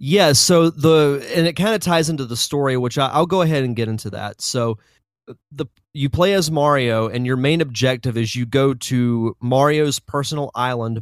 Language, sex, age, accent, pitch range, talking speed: English, male, 30-49, American, 115-140 Hz, 205 wpm